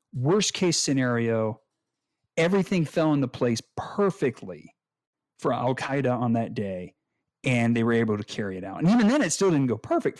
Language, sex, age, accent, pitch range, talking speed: English, male, 50-69, American, 120-170 Hz, 175 wpm